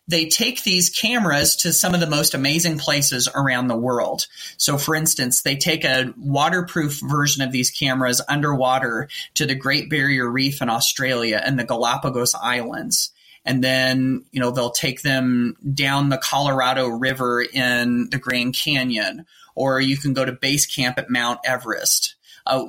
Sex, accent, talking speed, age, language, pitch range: male, American, 165 wpm, 30-49, English, 130-160 Hz